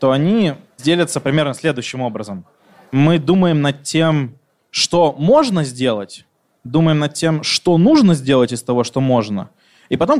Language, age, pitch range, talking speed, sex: Russian, 20-39, 130-175 Hz, 145 wpm, male